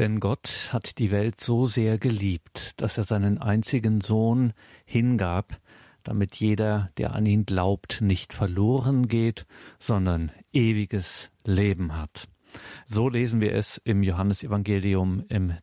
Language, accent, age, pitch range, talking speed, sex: German, German, 50-69, 100-115 Hz, 130 wpm, male